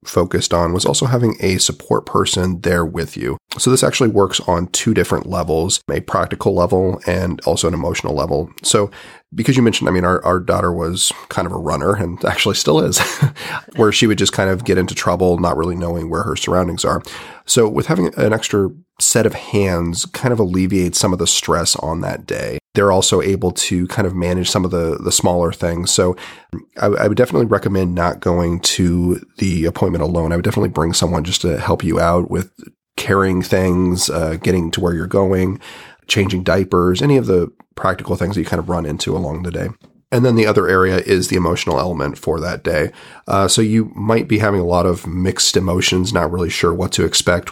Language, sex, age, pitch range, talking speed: English, male, 30-49, 85-95 Hz, 215 wpm